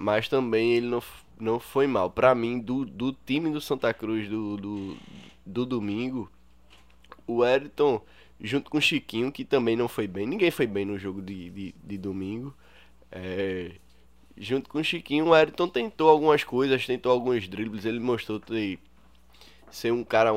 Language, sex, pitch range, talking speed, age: Portuguese, male, 90-130 Hz, 170 wpm, 10-29